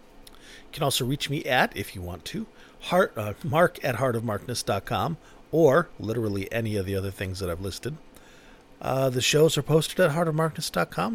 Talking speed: 165 wpm